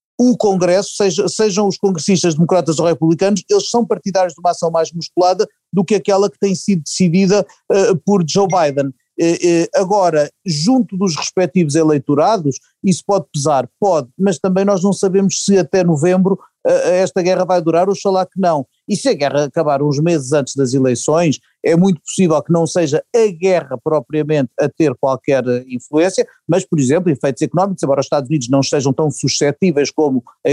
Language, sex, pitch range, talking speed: Portuguese, male, 150-190 Hz, 175 wpm